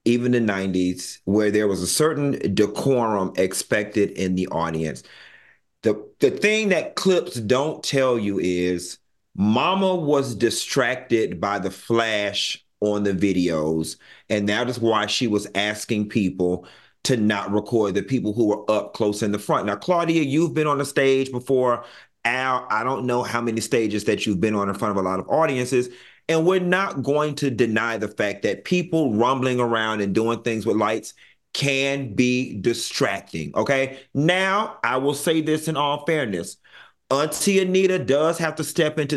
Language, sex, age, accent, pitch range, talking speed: English, male, 40-59, American, 110-160 Hz, 175 wpm